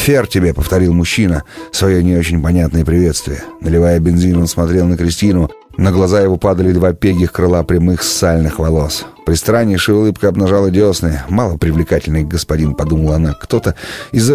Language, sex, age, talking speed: Russian, male, 30-49, 160 wpm